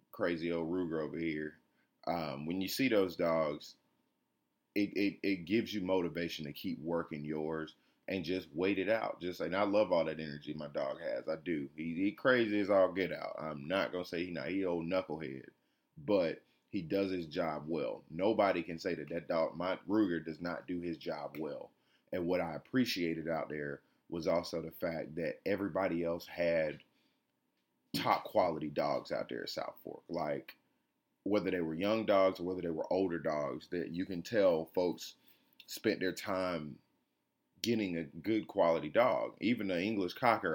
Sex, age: male, 30-49